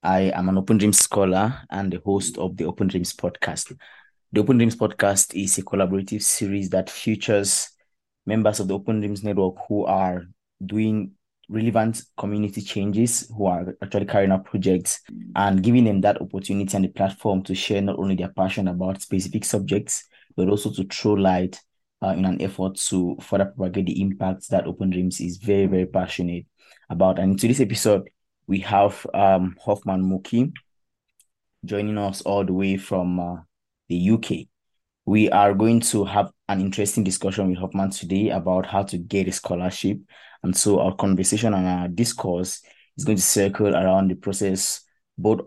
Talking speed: 175 wpm